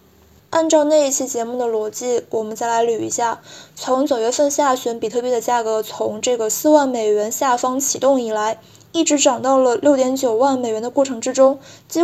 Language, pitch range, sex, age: Chinese, 230-275 Hz, female, 20-39